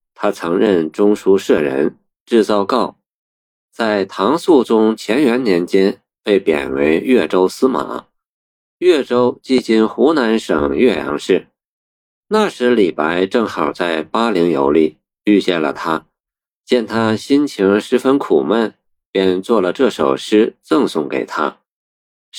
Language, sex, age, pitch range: Chinese, male, 50-69, 85-145 Hz